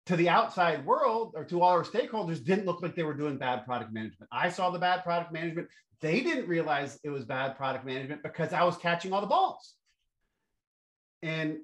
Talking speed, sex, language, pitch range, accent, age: 205 wpm, male, English, 125-165 Hz, American, 40-59